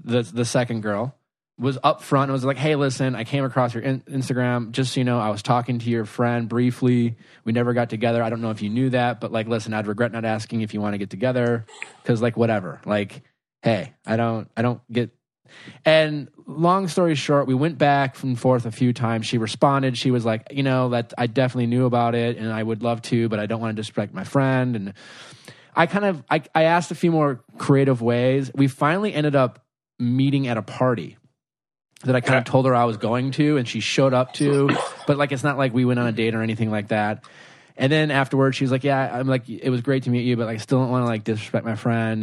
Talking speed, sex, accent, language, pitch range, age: 250 wpm, male, American, English, 115-135 Hz, 20-39